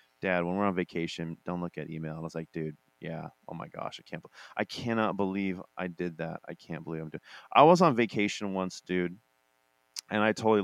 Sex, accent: male, American